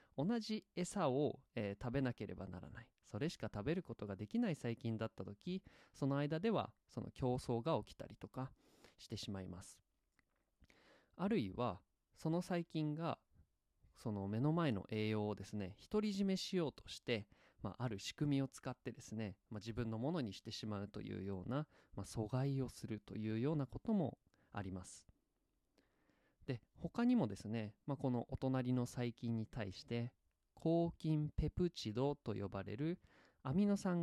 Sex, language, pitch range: male, Japanese, 105-145 Hz